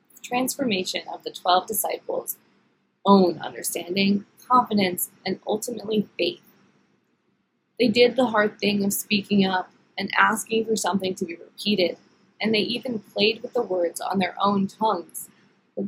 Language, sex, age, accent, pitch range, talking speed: English, female, 20-39, American, 190-220 Hz, 145 wpm